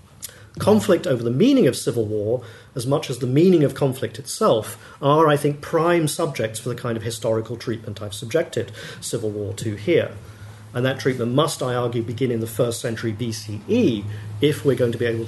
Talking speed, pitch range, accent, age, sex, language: 195 wpm, 110-140 Hz, British, 40-59, male, English